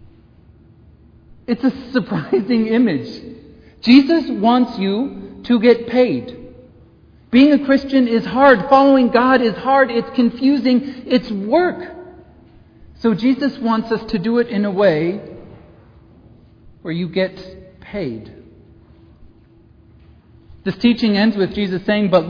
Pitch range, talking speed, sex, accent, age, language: 155-215 Hz, 120 wpm, male, American, 50-69, English